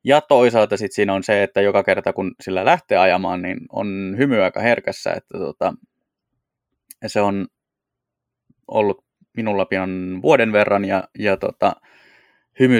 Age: 20-39